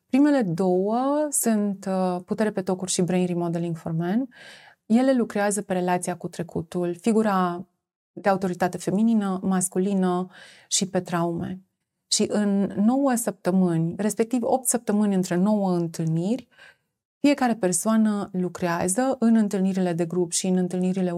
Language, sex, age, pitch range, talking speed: Romanian, female, 30-49, 180-225 Hz, 130 wpm